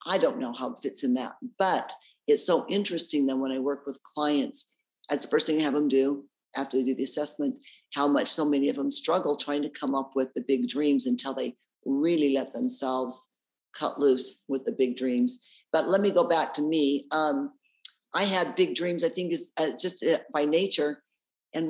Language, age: English, 50-69